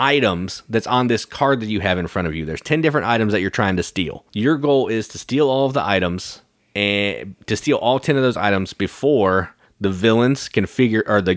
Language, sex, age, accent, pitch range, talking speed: English, male, 30-49, American, 95-120 Hz, 240 wpm